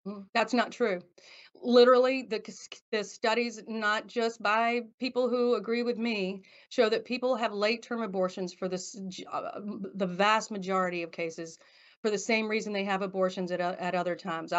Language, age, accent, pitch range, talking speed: English, 40-59, American, 190-225 Hz, 175 wpm